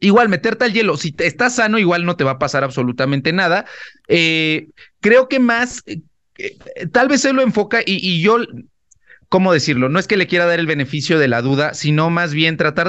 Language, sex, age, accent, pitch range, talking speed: Spanish, male, 30-49, Mexican, 145-200 Hz, 215 wpm